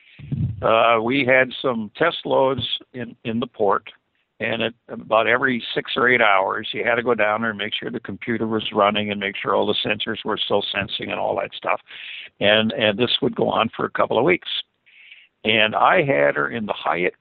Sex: male